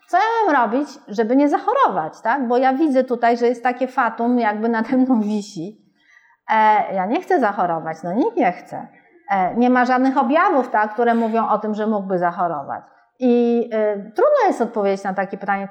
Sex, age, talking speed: female, 40-59, 170 wpm